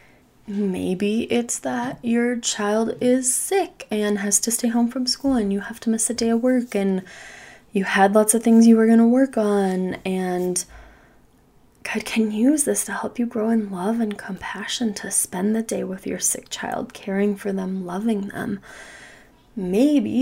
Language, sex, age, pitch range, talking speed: English, female, 20-39, 200-240 Hz, 185 wpm